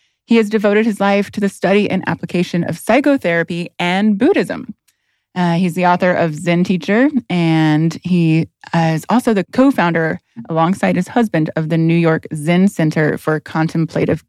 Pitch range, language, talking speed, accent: 160-215 Hz, English, 165 wpm, American